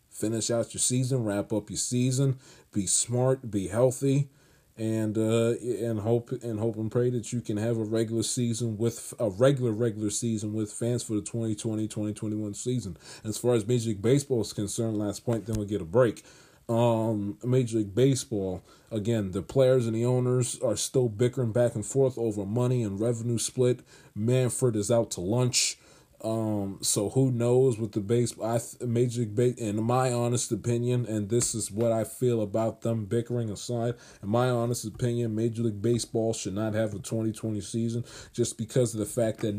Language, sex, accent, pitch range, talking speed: English, male, American, 110-125 Hz, 195 wpm